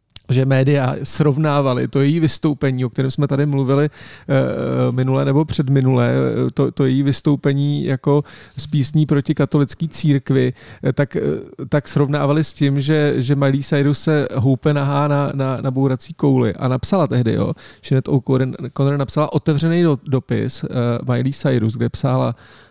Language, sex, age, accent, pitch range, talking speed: Czech, male, 40-59, native, 130-150 Hz, 130 wpm